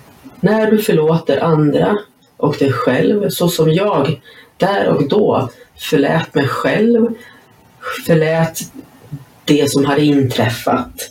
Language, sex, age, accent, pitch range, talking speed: Swedish, female, 30-49, native, 150-200 Hz, 115 wpm